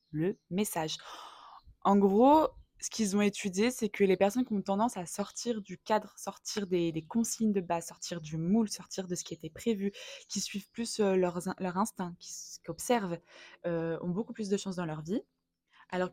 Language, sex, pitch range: French, female, 170-210 Hz